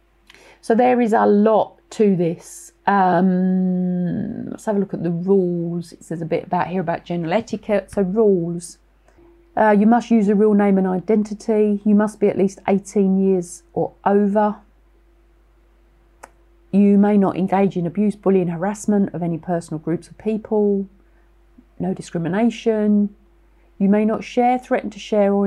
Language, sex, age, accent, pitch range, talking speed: English, female, 40-59, British, 185-215 Hz, 160 wpm